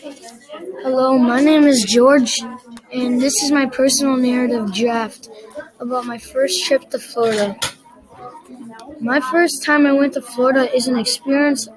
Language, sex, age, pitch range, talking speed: English, female, 20-39, 245-285 Hz, 145 wpm